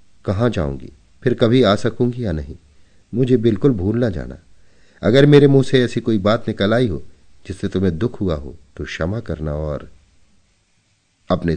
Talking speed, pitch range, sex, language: 170 wpm, 90-120 Hz, male, Hindi